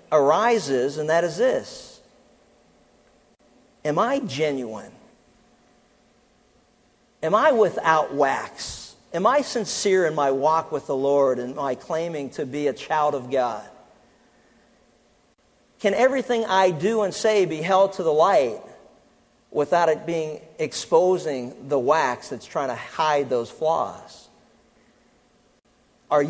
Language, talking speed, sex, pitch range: English, 125 wpm, male, 140-190 Hz